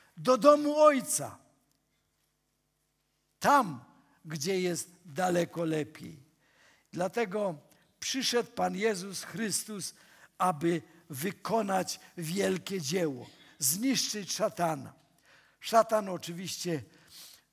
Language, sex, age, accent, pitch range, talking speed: Polish, male, 50-69, native, 140-175 Hz, 70 wpm